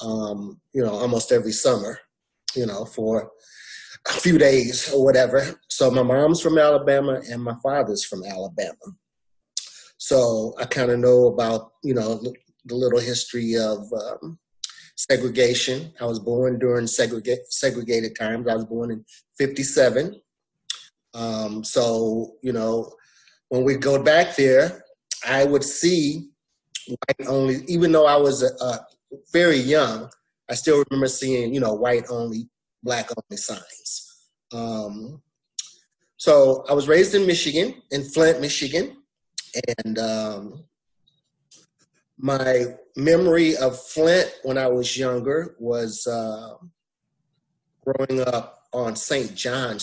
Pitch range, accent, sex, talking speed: 115-150 Hz, American, male, 130 wpm